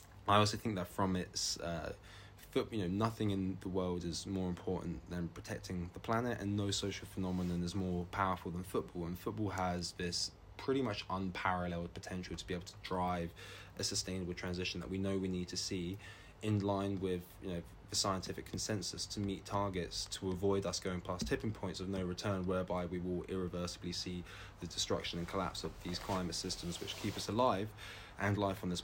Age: 20-39